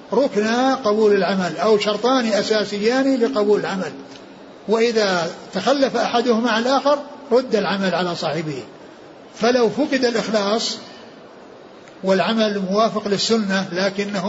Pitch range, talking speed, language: 190-230 Hz, 100 wpm, Arabic